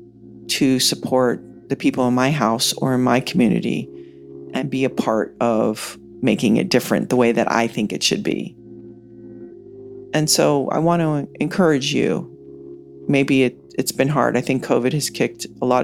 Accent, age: American, 40-59